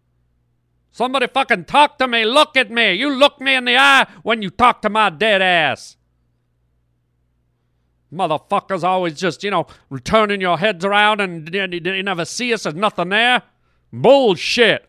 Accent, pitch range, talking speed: American, 150-220 Hz, 155 wpm